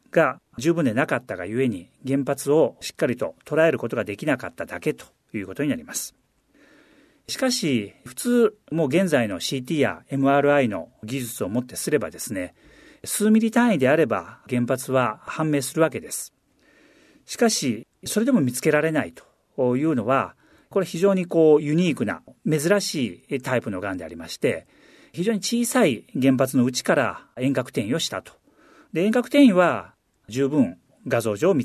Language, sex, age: Japanese, male, 40-59